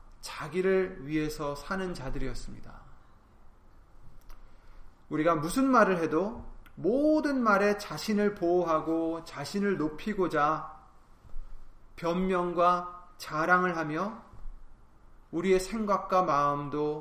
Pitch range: 145-195 Hz